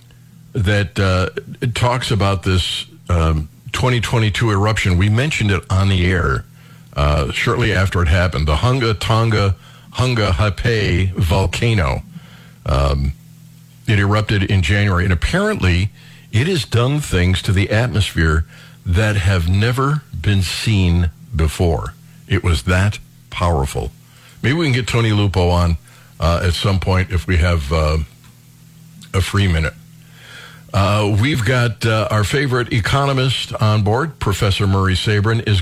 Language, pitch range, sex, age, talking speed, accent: English, 95-130 Hz, male, 50-69, 135 wpm, American